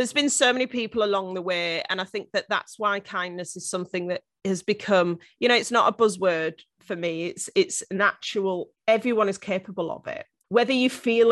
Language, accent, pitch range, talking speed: English, British, 175-210 Hz, 205 wpm